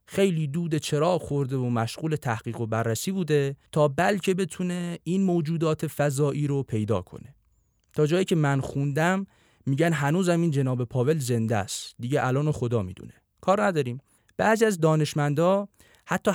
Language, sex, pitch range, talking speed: Persian, male, 120-160 Hz, 150 wpm